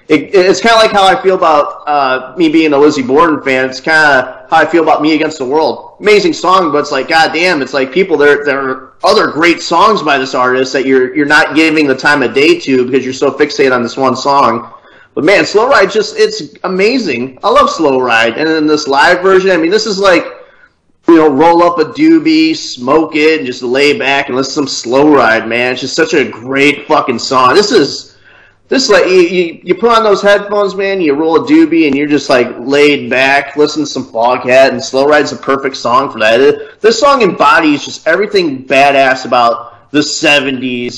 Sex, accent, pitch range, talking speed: male, American, 130-175 Hz, 225 wpm